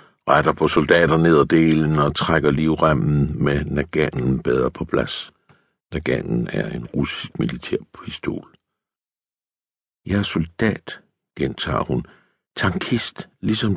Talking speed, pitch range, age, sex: 120 wpm, 70-90 Hz, 60-79, male